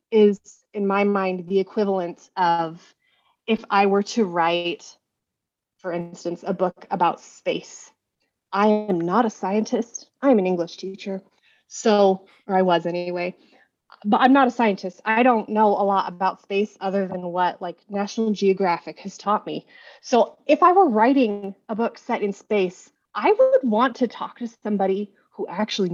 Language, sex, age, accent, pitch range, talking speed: English, female, 30-49, American, 185-225 Hz, 165 wpm